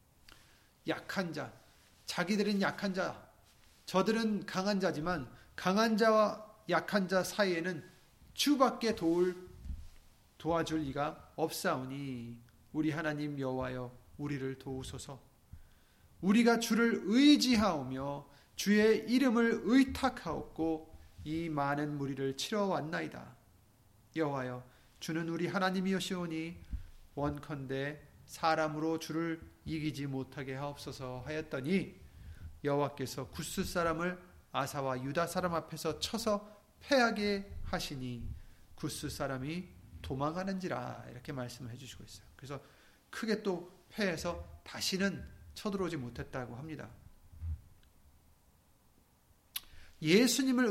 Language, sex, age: Korean, male, 30-49